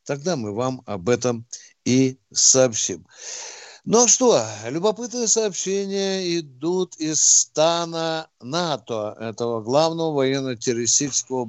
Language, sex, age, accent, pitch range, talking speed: Russian, male, 60-79, native, 120-175 Hz, 95 wpm